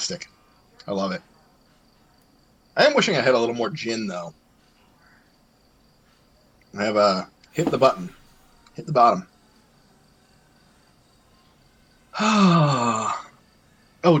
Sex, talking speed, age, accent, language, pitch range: male, 95 wpm, 30-49, American, English, 105-145 Hz